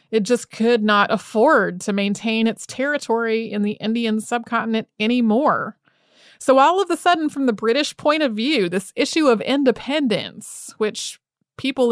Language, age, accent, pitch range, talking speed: English, 30-49, American, 210-260 Hz, 155 wpm